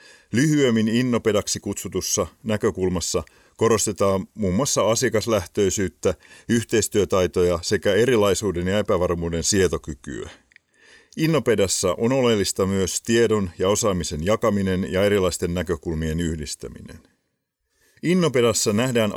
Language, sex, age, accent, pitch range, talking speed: Finnish, male, 50-69, native, 85-110 Hz, 90 wpm